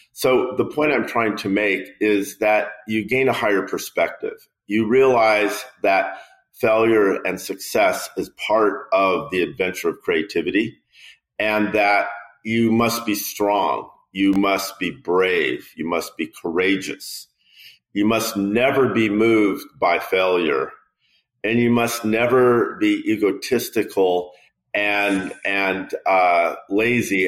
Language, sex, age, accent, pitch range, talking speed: English, male, 50-69, American, 100-125 Hz, 130 wpm